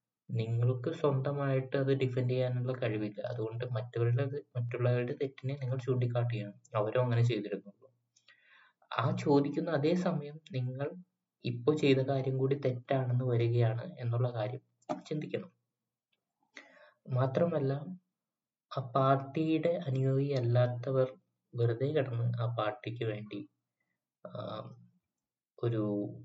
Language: Malayalam